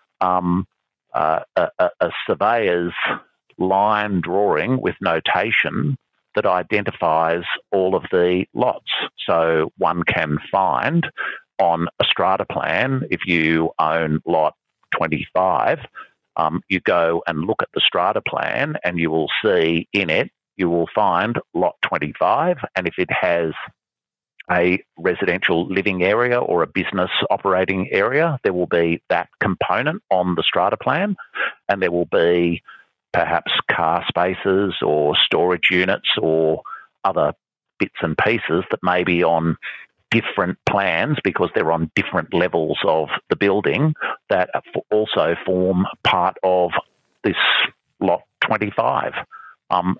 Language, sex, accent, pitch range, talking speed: English, male, Australian, 85-100 Hz, 130 wpm